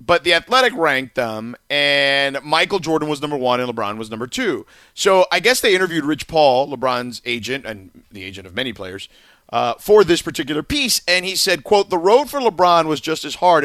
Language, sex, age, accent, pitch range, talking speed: English, male, 40-59, American, 130-175 Hz, 210 wpm